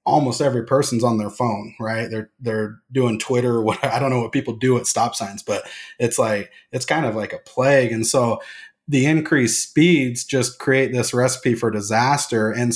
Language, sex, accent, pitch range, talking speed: English, male, American, 115-130 Hz, 200 wpm